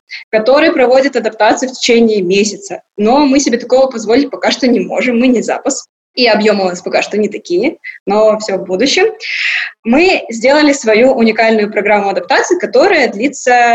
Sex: female